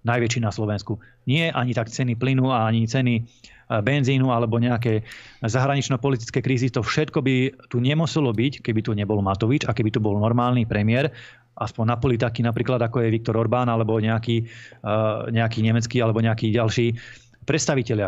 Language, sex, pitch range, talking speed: Slovak, male, 115-130 Hz, 155 wpm